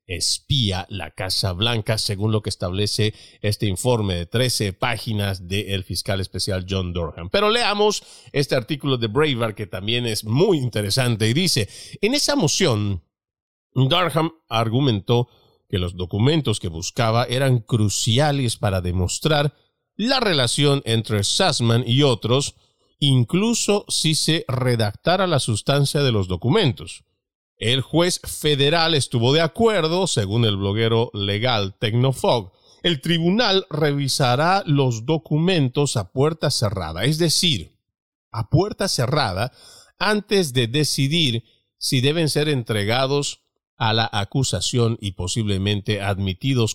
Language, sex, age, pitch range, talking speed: Spanish, male, 40-59, 105-145 Hz, 125 wpm